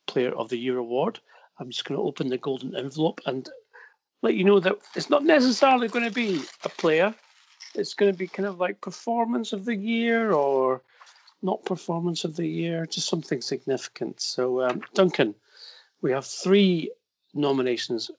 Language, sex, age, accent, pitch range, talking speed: English, male, 40-59, British, 125-205 Hz, 175 wpm